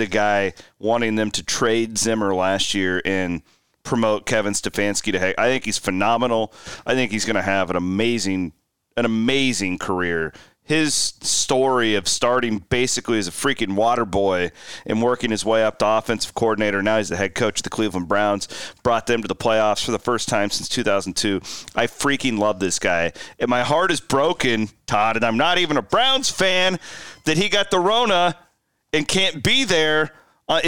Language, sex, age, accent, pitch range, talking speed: English, male, 30-49, American, 105-140 Hz, 190 wpm